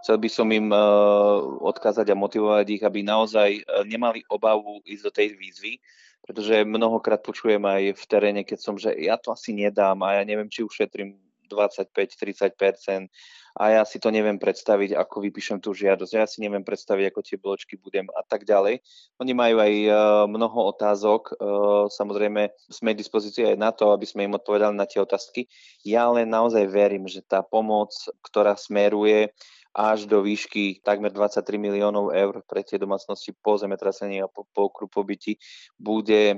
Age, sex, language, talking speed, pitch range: 20-39, male, Slovak, 165 wpm, 100-110 Hz